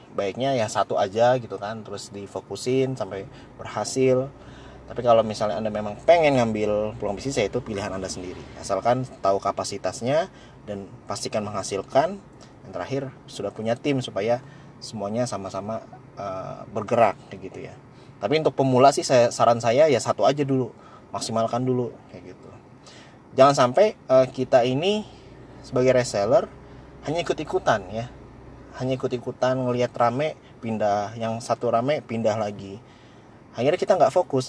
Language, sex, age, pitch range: Indonesian, male, 20-39, 105-130 Hz